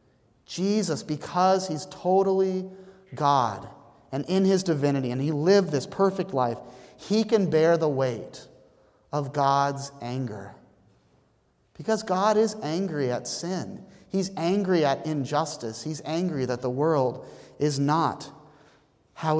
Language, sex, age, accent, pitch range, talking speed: English, male, 30-49, American, 135-180 Hz, 125 wpm